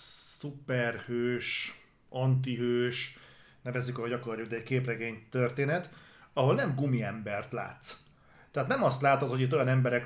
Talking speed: 130 wpm